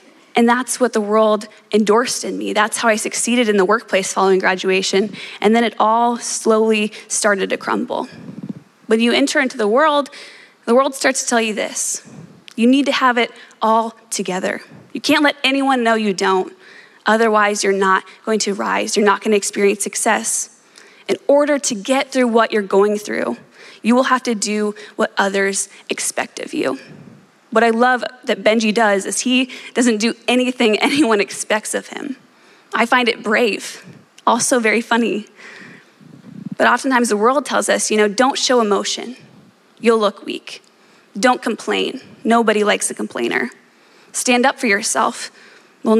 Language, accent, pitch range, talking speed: English, American, 210-250 Hz, 170 wpm